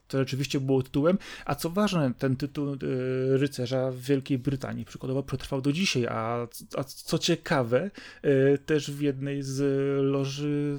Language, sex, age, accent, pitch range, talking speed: Polish, male, 30-49, native, 125-145 Hz, 140 wpm